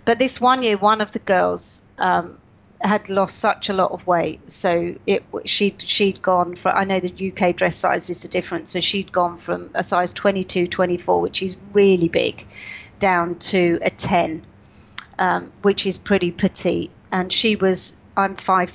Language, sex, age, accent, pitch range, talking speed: English, female, 40-59, British, 175-195 Hz, 180 wpm